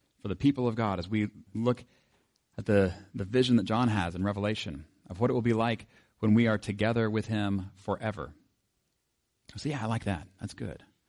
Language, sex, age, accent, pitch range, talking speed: English, male, 40-59, American, 95-120 Hz, 205 wpm